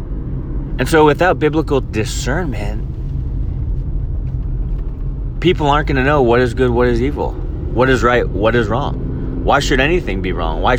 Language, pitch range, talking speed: English, 100-130 Hz, 155 wpm